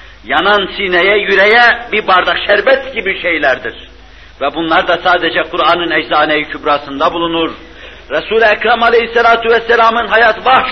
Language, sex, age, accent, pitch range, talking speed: Turkish, male, 60-79, native, 145-210 Hz, 125 wpm